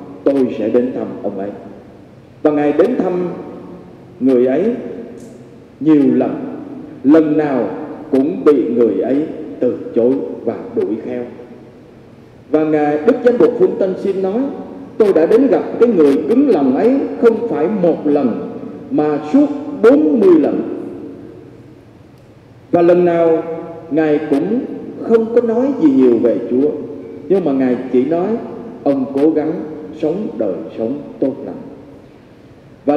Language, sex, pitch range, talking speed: Vietnamese, male, 145-235 Hz, 140 wpm